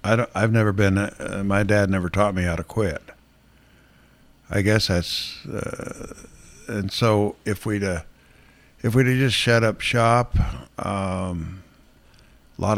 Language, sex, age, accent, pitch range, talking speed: English, male, 60-79, American, 90-110 Hz, 145 wpm